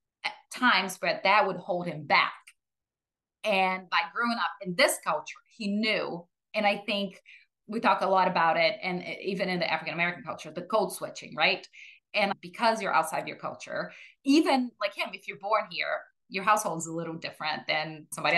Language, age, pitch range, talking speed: English, 20-39, 165-205 Hz, 185 wpm